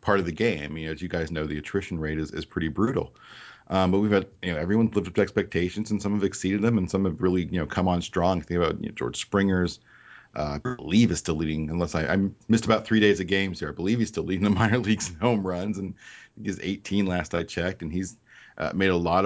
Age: 40-59